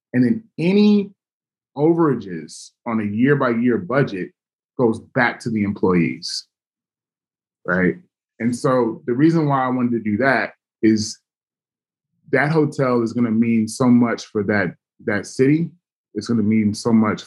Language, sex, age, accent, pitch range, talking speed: English, male, 20-39, American, 105-135 Hz, 150 wpm